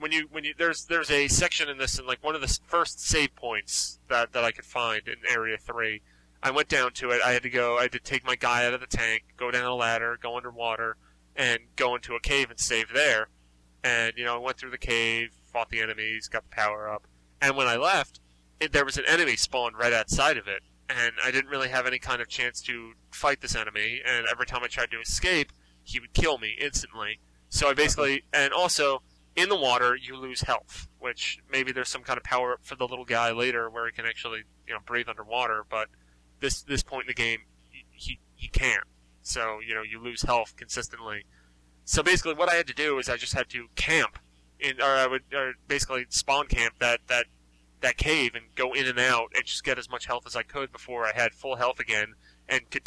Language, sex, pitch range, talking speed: English, male, 105-130 Hz, 240 wpm